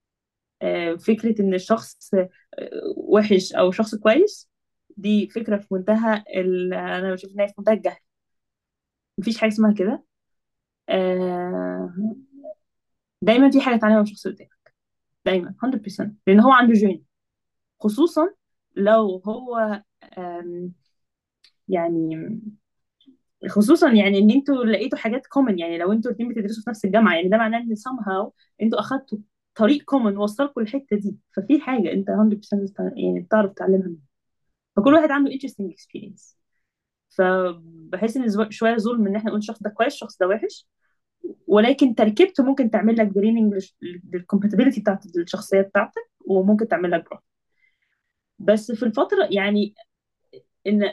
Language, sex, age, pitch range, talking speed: Arabic, female, 20-39, 190-245 Hz, 130 wpm